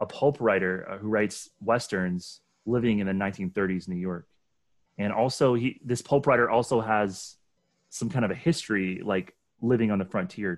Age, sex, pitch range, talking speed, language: 30-49, male, 95-125 Hz, 170 wpm, English